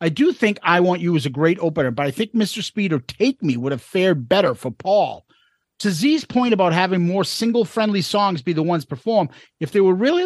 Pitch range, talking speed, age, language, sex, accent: 150-200 Hz, 235 wpm, 40-59, English, male, American